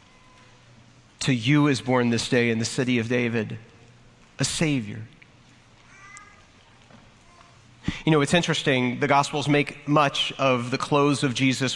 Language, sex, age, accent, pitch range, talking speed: English, male, 40-59, American, 120-140 Hz, 135 wpm